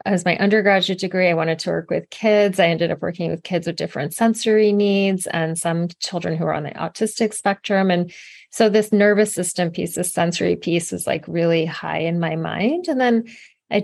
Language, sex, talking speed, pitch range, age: English, female, 210 wpm, 175-215 Hz, 30-49